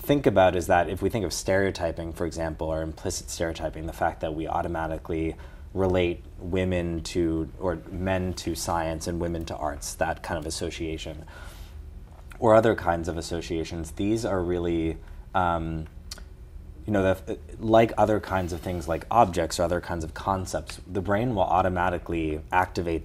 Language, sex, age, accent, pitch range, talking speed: English, male, 20-39, American, 80-90 Hz, 165 wpm